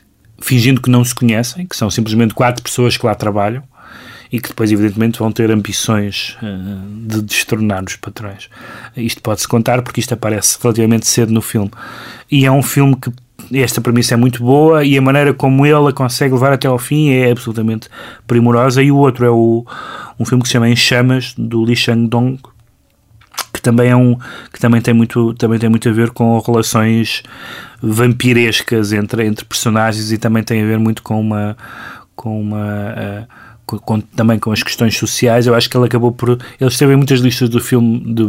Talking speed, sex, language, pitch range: 190 wpm, male, Portuguese, 110-125 Hz